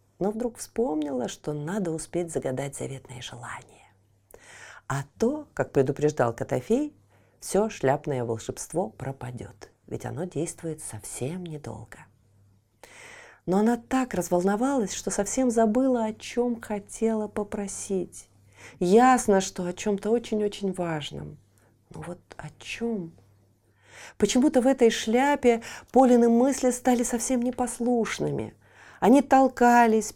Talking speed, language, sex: 110 wpm, Russian, female